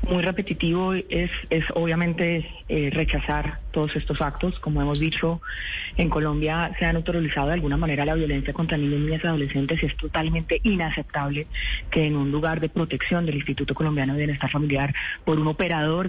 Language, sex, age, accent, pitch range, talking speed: Spanish, female, 30-49, Colombian, 140-160 Hz, 180 wpm